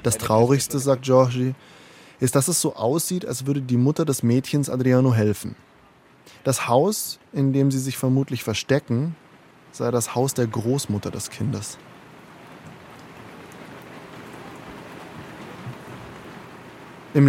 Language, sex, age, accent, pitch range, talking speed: German, male, 20-39, German, 115-140 Hz, 115 wpm